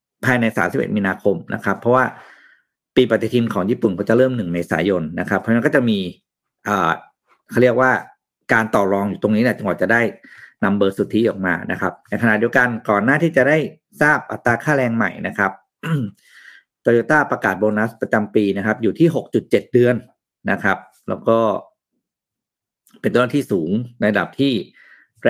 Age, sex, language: 50-69, male, Thai